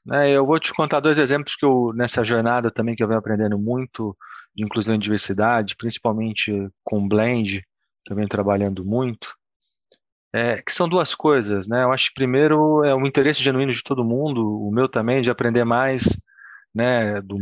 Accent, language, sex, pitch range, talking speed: Brazilian, Portuguese, male, 110-130 Hz, 190 wpm